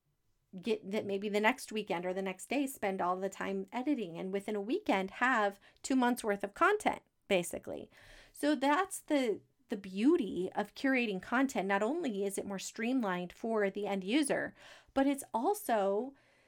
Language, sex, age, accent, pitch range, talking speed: English, female, 30-49, American, 195-255 Hz, 170 wpm